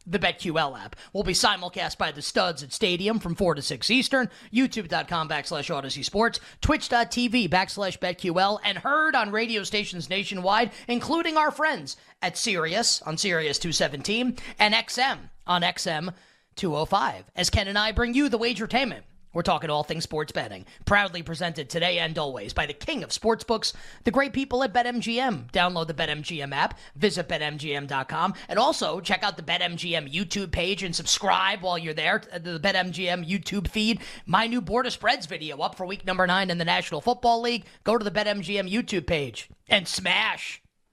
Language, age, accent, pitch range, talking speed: English, 30-49, American, 170-225 Hz, 175 wpm